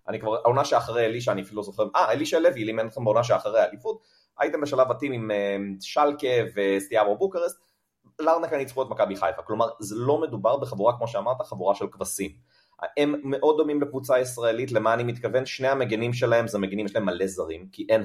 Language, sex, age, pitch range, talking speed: Hebrew, male, 30-49, 105-135 Hz, 195 wpm